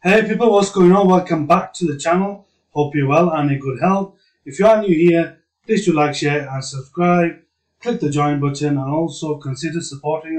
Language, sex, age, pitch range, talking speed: English, male, 30-49, 140-170 Hz, 210 wpm